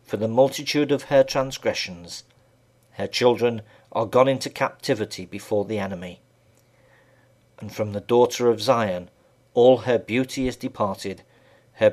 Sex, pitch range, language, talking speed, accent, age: male, 110-130 Hz, English, 135 wpm, British, 50-69